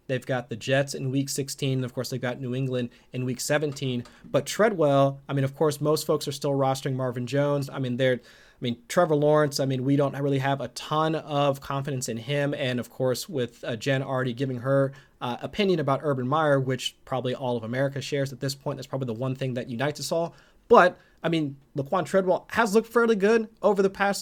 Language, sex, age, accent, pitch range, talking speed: English, male, 30-49, American, 135-155 Hz, 230 wpm